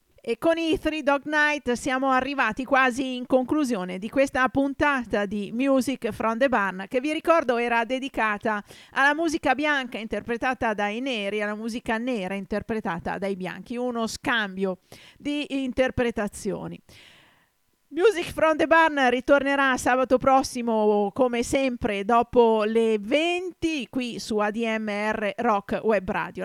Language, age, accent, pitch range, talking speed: Italian, 40-59, native, 215-275 Hz, 135 wpm